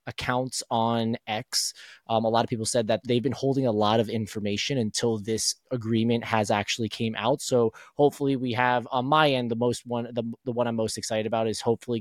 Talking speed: 215 wpm